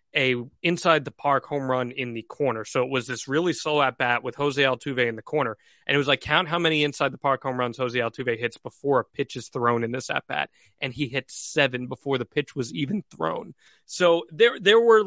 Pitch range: 130-175 Hz